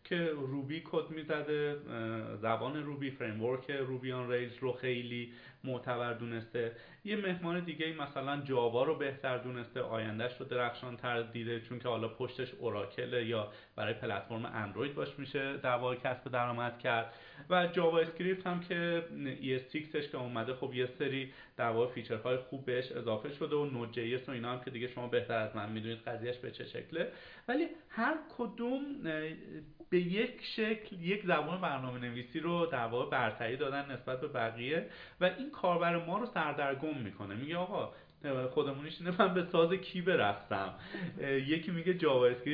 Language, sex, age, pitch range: Persian, male, 30-49, 120-170 Hz